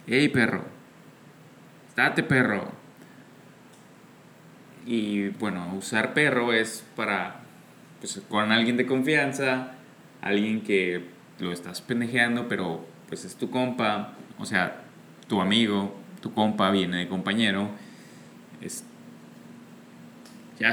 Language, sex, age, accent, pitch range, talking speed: English, male, 20-39, Mexican, 105-130 Hz, 105 wpm